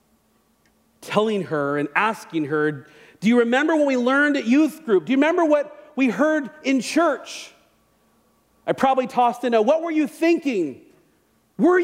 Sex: male